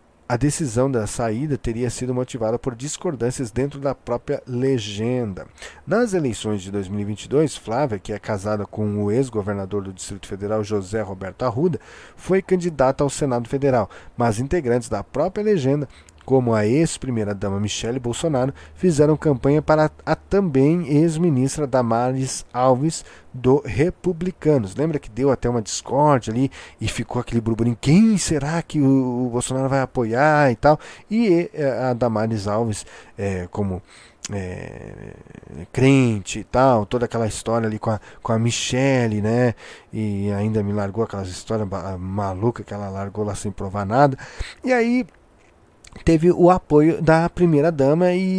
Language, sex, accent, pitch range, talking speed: Portuguese, male, Brazilian, 105-155 Hz, 150 wpm